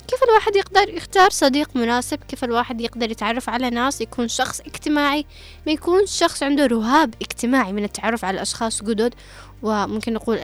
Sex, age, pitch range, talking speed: female, 10-29, 225-290 Hz, 160 wpm